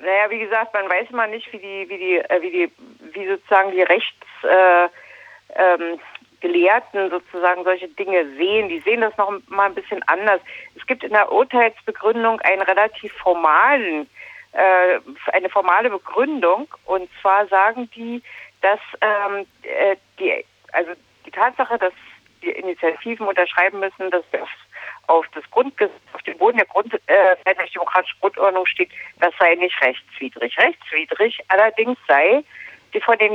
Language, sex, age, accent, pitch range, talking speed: German, female, 50-69, German, 185-230 Hz, 150 wpm